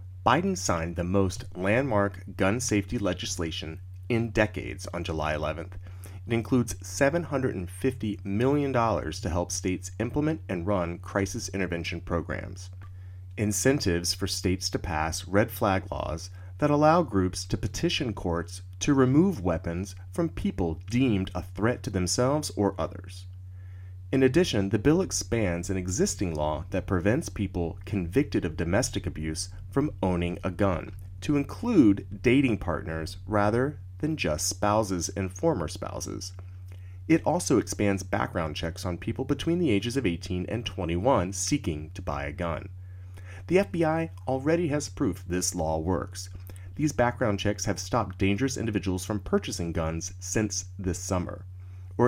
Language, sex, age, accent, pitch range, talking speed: English, male, 30-49, American, 90-110 Hz, 140 wpm